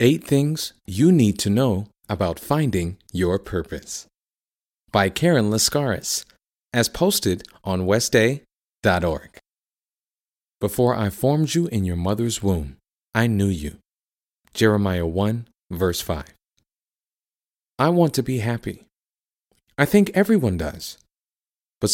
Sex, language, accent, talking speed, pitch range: male, English, American, 115 wpm, 95-135 Hz